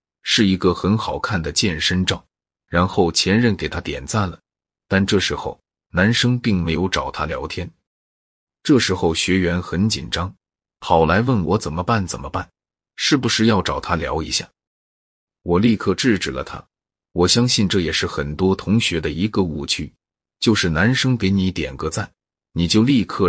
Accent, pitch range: native, 75-105 Hz